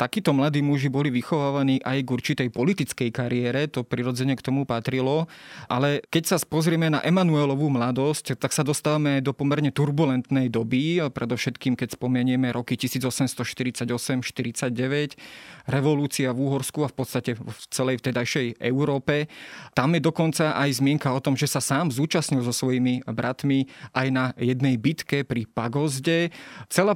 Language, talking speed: Slovak, 145 wpm